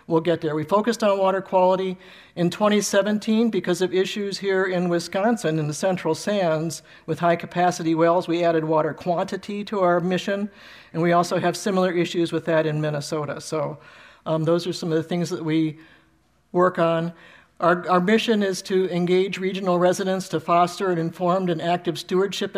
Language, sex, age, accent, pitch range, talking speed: English, male, 60-79, American, 165-190 Hz, 180 wpm